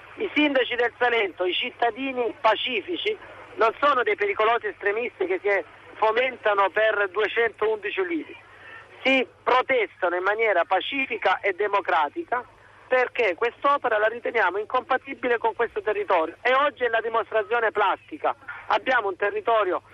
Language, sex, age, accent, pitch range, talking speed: Italian, male, 40-59, native, 205-275 Hz, 125 wpm